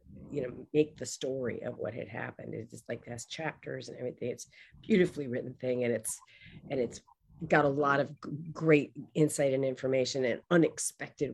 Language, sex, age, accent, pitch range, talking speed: English, female, 40-59, American, 130-160 Hz, 180 wpm